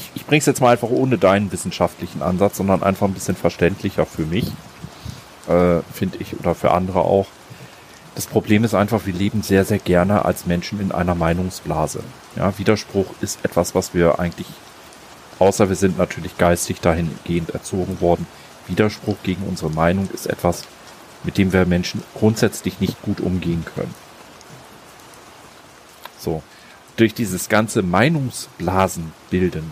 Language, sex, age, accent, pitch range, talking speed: German, male, 30-49, German, 85-105 Hz, 150 wpm